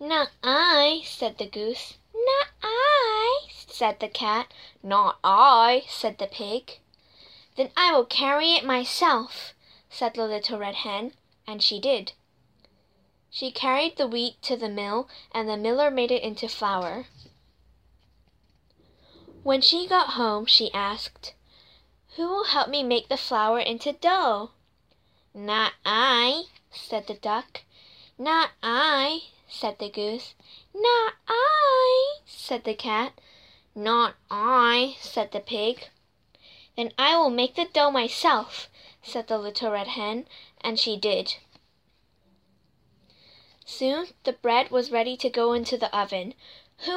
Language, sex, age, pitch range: Chinese, female, 10-29, 215-290 Hz